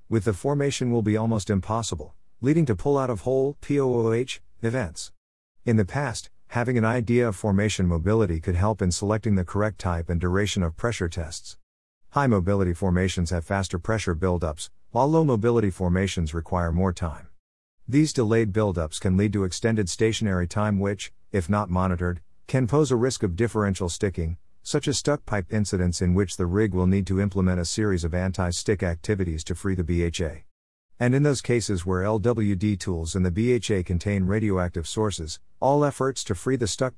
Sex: male